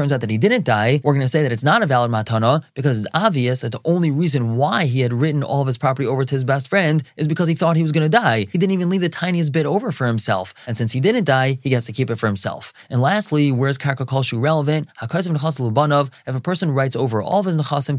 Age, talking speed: 20-39, 275 wpm